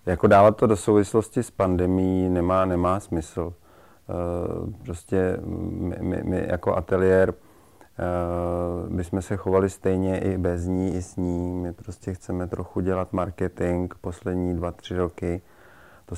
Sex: male